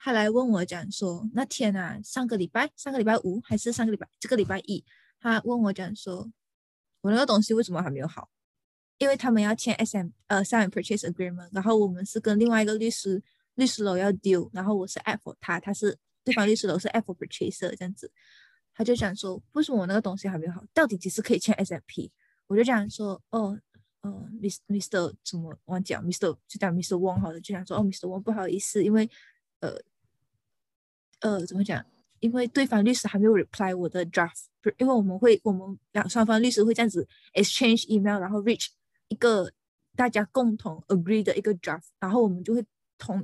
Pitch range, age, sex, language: 185-225 Hz, 20-39, female, Chinese